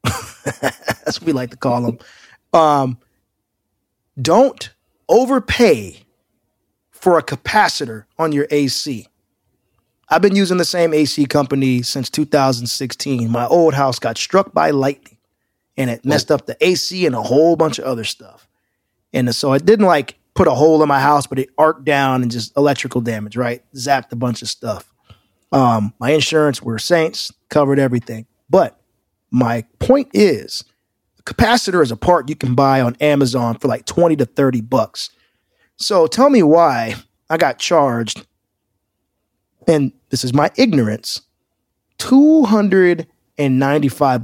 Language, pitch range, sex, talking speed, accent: English, 120-160 Hz, male, 150 wpm, American